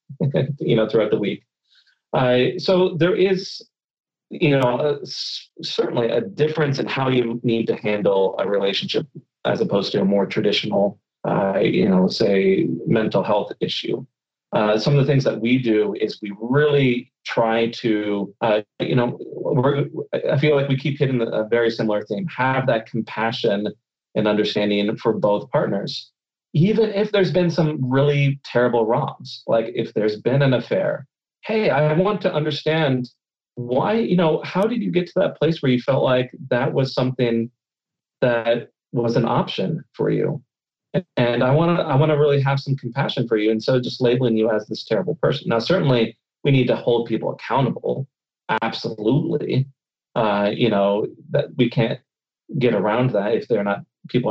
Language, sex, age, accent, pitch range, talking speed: English, male, 30-49, American, 115-150 Hz, 170 wpm